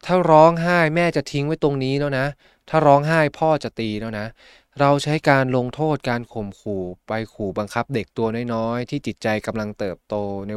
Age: 20-39